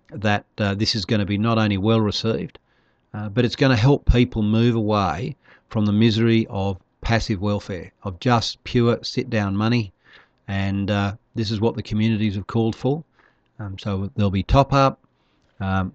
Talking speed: 180 wpm